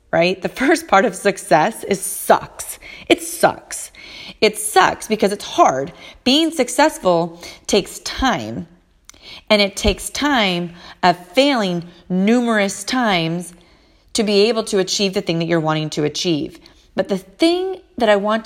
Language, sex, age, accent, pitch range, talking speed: English, female, 30-49, American, 165-210 Hz, 145 wpm